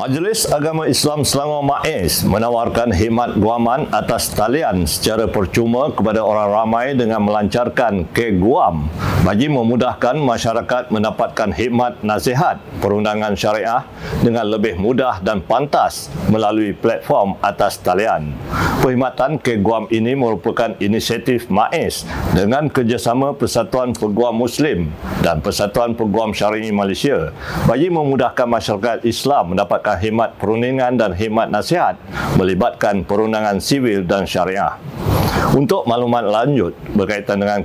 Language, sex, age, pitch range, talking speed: Malay, male, 60-79, 105-120 Hz, 115 wpm